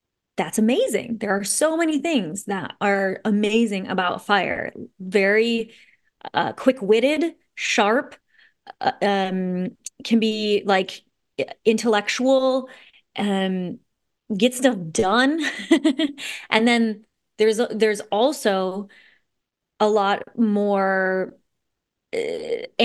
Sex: female